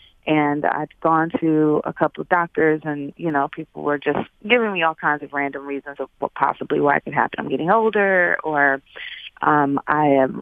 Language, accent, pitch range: English, American, 145-165 Hz